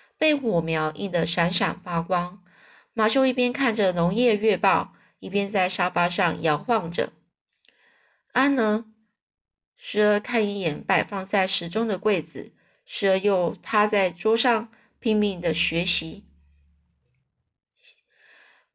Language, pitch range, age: Chinese, 180-230 Hz, 20-39